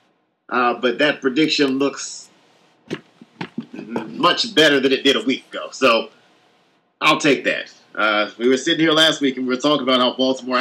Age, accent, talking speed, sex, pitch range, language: 30-49, American, 175 wpm, male, 125-145 Hz, English